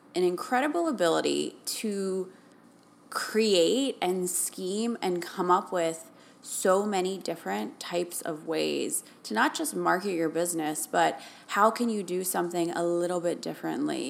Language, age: English, 20-39